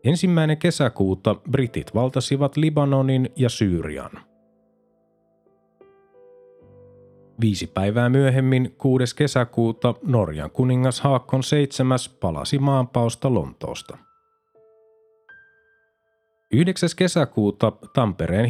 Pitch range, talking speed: 110-145 Hz, 70 wpm